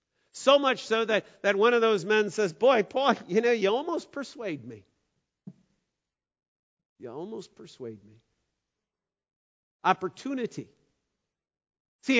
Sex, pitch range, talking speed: male, 180-260 Hz, 120 wpm